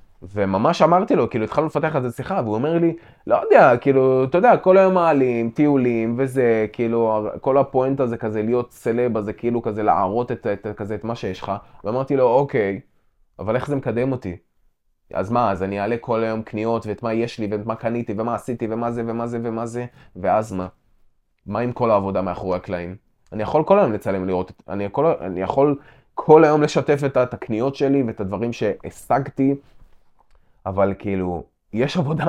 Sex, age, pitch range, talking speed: male, 20-39, 105-140 Hz, 190 wpm